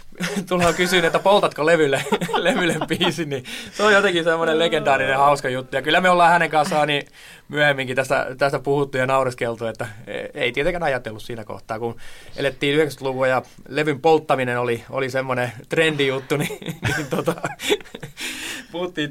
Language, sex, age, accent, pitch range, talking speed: Finnish, male, 20-39, native, 120-155 Hz, 155 wpm